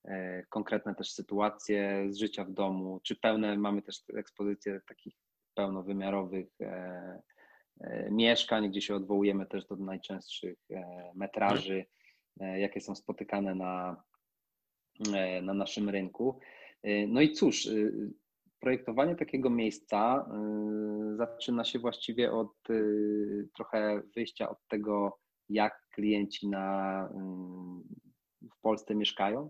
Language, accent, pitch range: Polish, native, 95-115 Hz